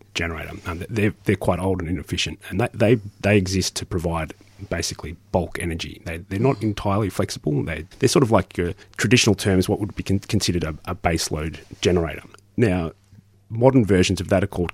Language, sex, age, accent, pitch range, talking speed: English, male, 30-49, Australian, 85-105 Hz, 190 wpm